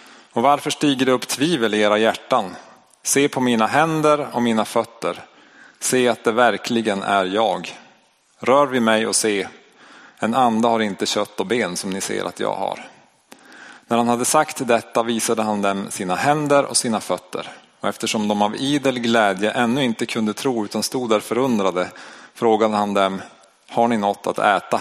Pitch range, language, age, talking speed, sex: 105-125 Hz, Swedish, 30-49, 180 wpm, male